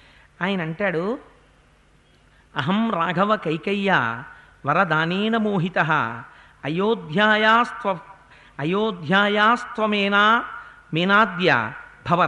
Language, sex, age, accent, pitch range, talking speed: Telugu, male, 50-69, native, 175-245 Hz, 50 wpm